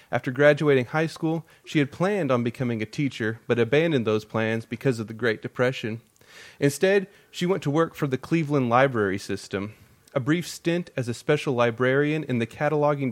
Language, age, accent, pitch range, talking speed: English, 30-49, American, 115-145 Hz, 185 wpm